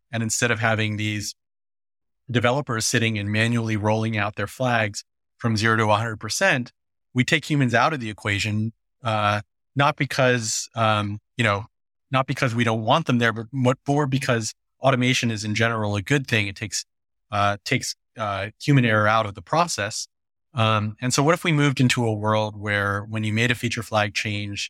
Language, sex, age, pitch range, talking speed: English, male, 30-49, 105-120 Hz, 185 wpm